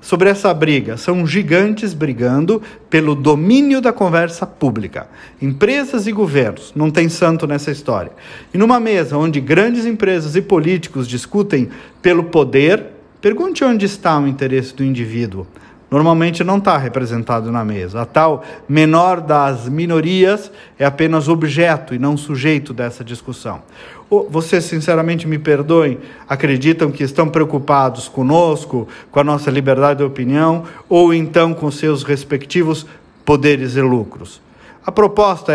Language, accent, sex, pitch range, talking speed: Portuguese, Brazilian, male, 140-195 Hz, 135 wpm